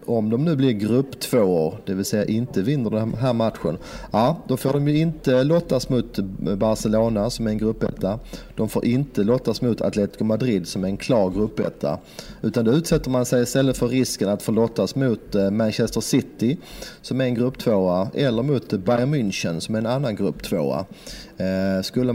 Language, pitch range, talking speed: English, 100-130 Hz, 190 wpm